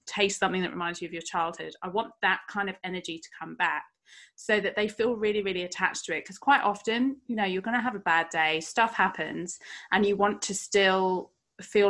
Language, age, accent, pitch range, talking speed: English, 30-49, British, 175-215 Hz, 230 wpm